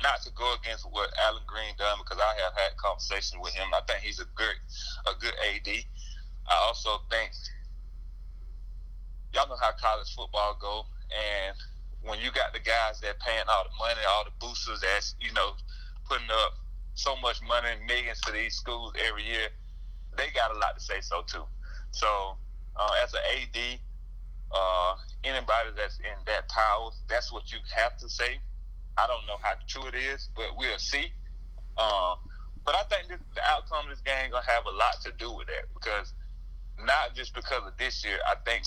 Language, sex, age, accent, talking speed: English, male, 30-49, American, 190 wpm